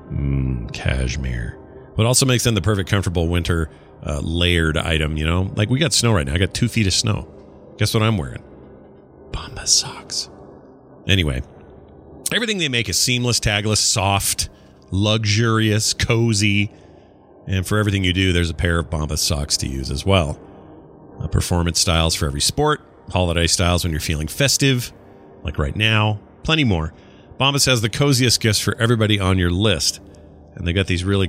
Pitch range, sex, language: 80-115 Hz, male, English